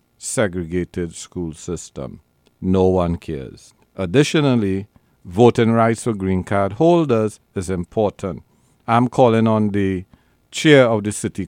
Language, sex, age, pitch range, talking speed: English, male, 50-69, 100-125 Hz, 120 wpm